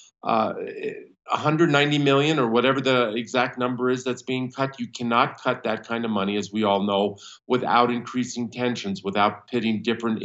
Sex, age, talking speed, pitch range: male, 50-69, 170 wpm, 105-125 Hz